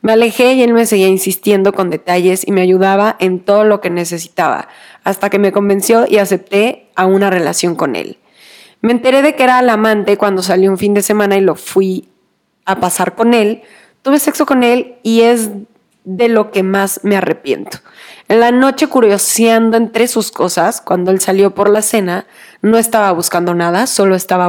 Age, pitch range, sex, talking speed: 30-49, 190-235 Hz, female, 195 wpm